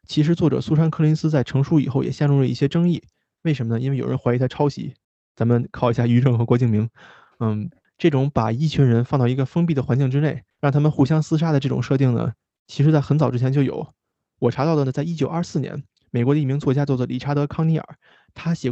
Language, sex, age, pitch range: Chinese, male, 20-39, 125-150 Hz